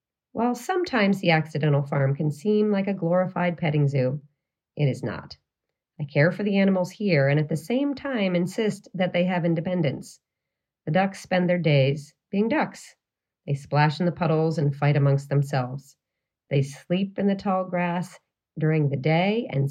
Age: 40-59